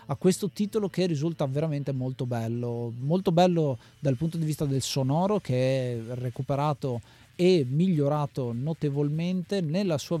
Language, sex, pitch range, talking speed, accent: Italian, male, 135-165 Hz, 140 wpm, native